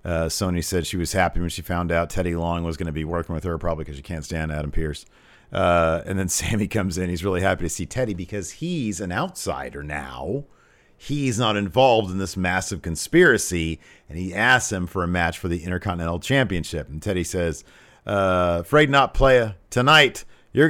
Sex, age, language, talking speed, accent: male, 50-69, English, 205 wpm, American